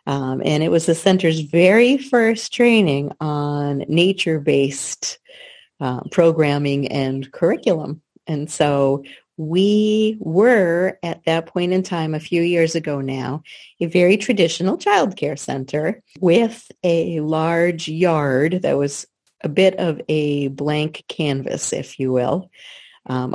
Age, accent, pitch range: 40-59, American, 145-185 Hz